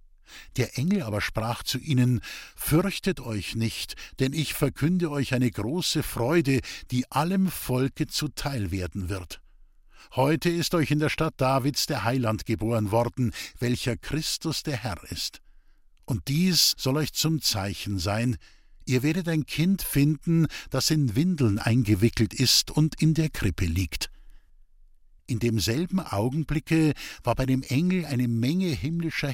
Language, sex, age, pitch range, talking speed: German, male, 50-69, 115-160 Hz, 145 wpm